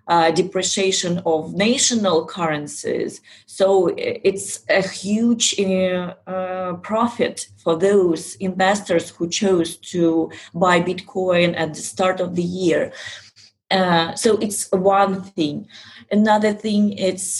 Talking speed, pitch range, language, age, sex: 115 wpm, 160-190 Hz, English, 30-49, female